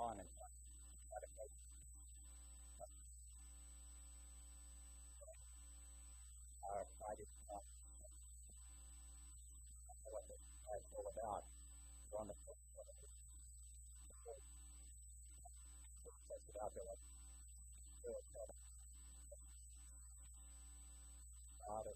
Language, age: English, 50-69